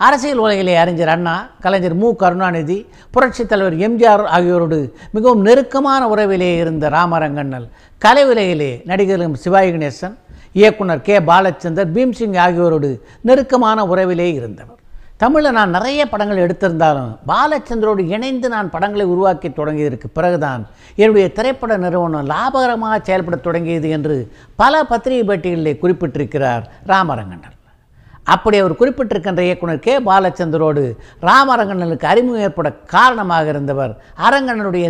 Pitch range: 155-215 Hz